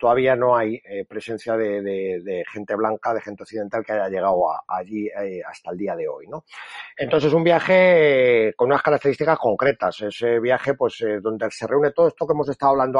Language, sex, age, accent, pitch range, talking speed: Spanish, male, 30-49, Spanish, 115-145 Hz, 210 wpm